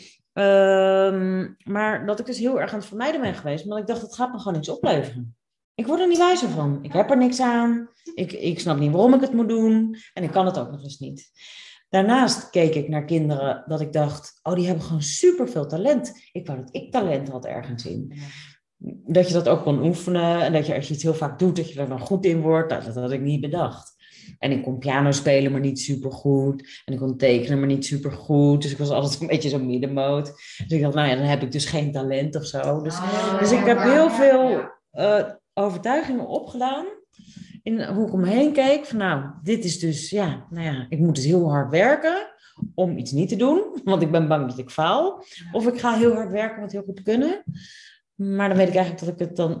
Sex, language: female, Dutch